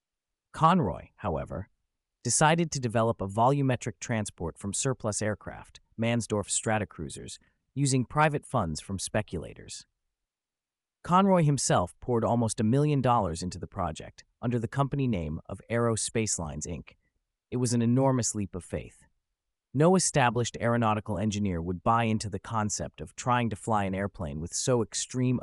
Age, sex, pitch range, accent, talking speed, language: 30-49, male, 95-125 Hz, American, 145 wpm, English